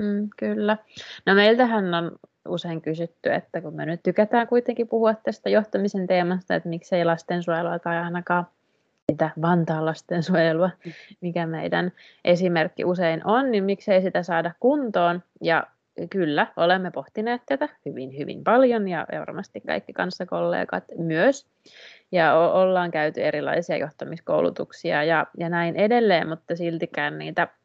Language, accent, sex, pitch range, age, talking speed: Finnish, native, female, 170-210 Hz, 30-49, 130 wpm